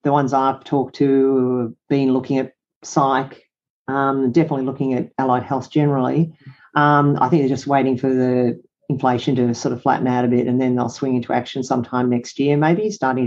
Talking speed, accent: 200 wpm, Australian